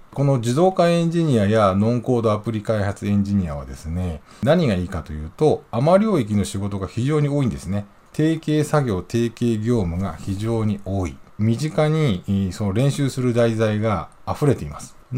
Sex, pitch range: male, 95-125 Hz